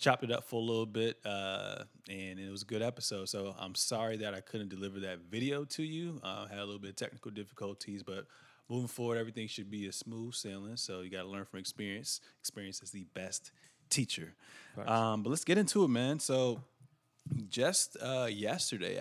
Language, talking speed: English, 205 wpm